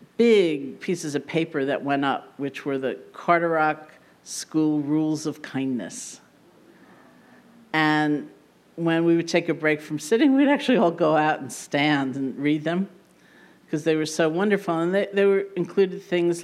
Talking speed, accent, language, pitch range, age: 165 wpm, American, English, 140-180 Hz, 50-69